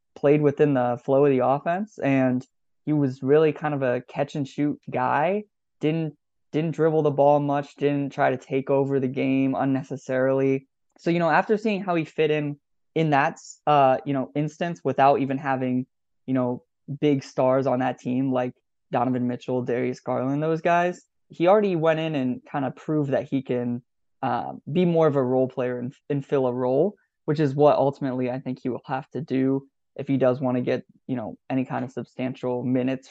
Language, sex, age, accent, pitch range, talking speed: English, male, 20-39, American, 130-150 Hz, 200 wpm